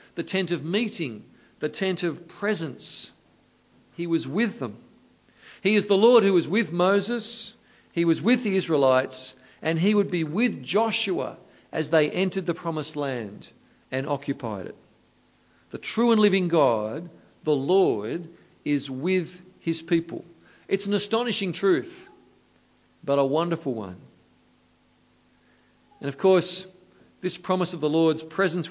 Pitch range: 135-190 Hz